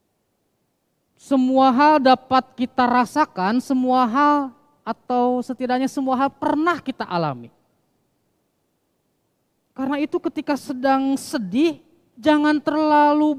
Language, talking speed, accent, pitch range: Indonesian, 95 wpm, native, 205-305 Hz